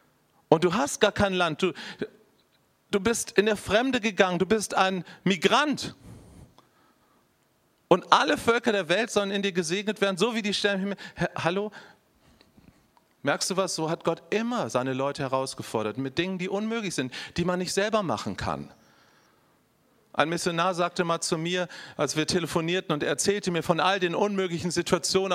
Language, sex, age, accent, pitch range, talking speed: German, male, 40-59, German, 160-195 Hz, 165 wpm